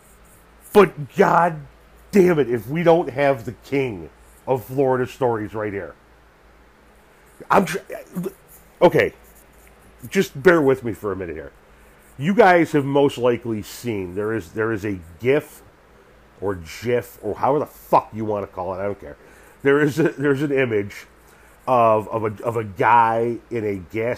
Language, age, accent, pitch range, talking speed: English, 40-59, American, 105-145 Hz, 165 wpm